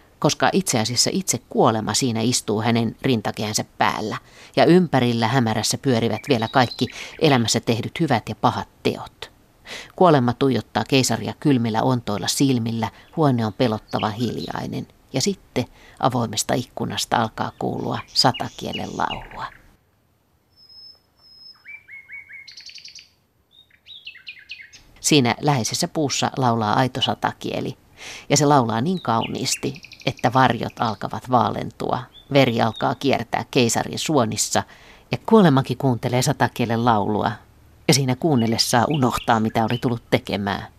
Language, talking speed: Finnish, 110 wpm